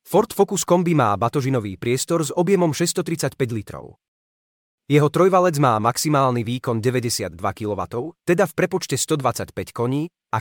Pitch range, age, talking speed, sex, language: 115-170 Hz, 30-49, 135 wpm, male, Slovak